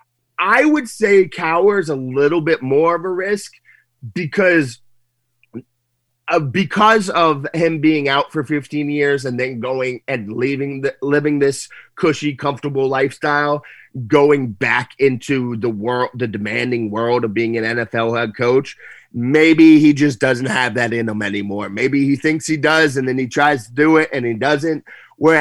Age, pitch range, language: 30-49, 120-155 Hz, English